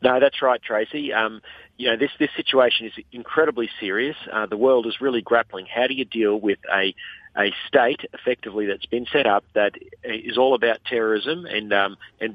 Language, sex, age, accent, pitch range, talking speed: English, male, 40-59, Australian, 110-135 Hz, 195 wpm